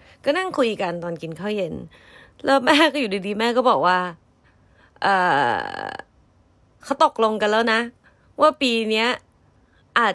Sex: female